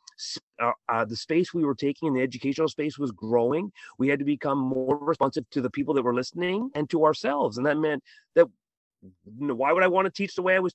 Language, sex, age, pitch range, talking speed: English, male, 40-59, 120-155 Hz, 245 wpm